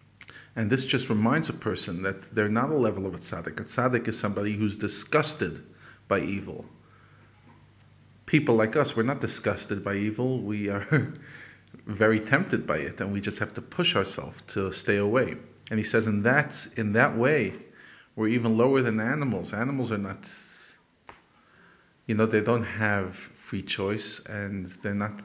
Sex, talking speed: male, 170 wpm